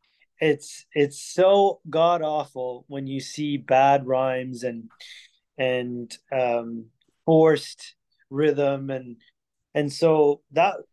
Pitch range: 130-160 Hz